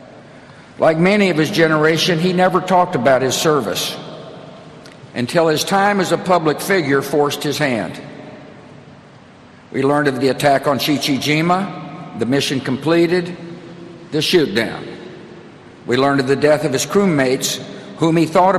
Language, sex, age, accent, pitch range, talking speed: English, male, 60-79, American, 145-175 Hz, 145 wpm